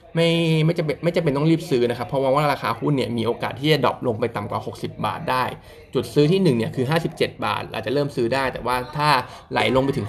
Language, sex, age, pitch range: Thai, male, 20-39, 115-145 Hz